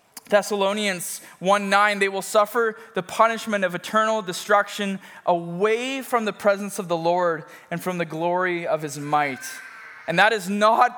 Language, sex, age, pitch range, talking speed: English, male, 20-39, 180-220 Hz, 160 wpm